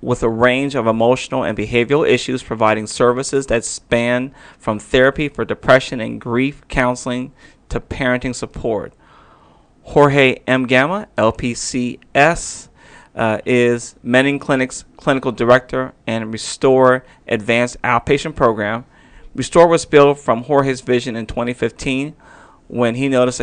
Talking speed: 125 wpm